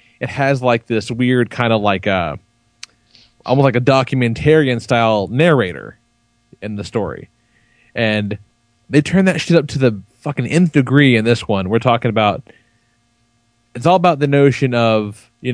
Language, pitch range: English, 115-135 Hz